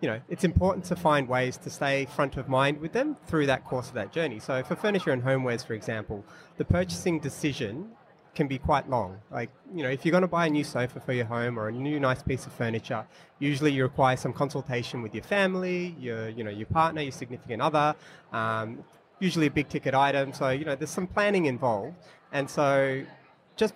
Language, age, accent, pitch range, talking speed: English, 30-49, Australian, 125-155 Hz, 220 wpm